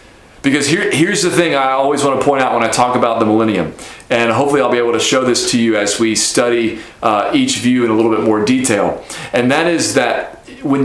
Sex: male